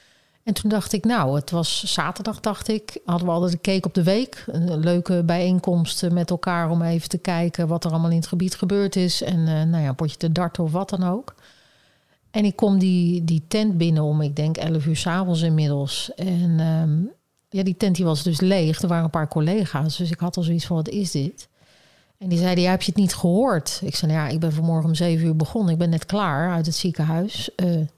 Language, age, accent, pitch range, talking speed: Dutch, 40-59, Dutch, 160-185 Hz, 240 wpm